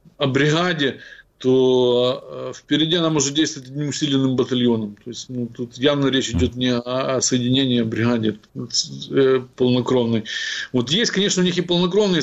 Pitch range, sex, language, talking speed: 125-150 Hz, male, Ukrainian, 150 wpm